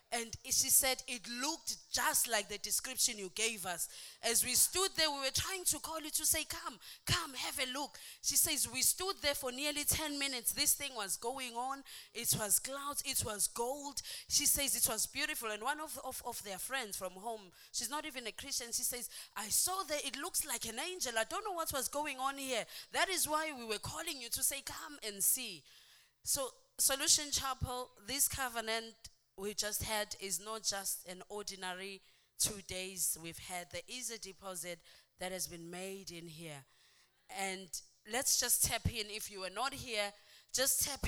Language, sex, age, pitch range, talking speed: English, female, 20-39, 190-275 Hz, 200 wpm